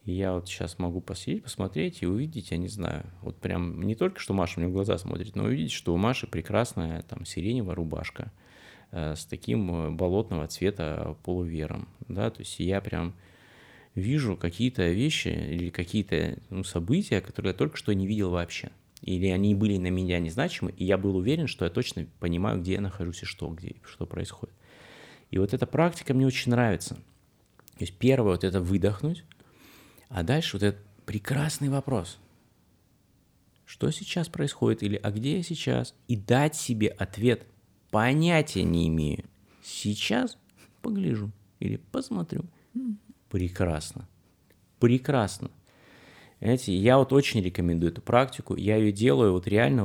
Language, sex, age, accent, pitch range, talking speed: Russian, male, 20-39, native, 90-130 Hz, 155 wpm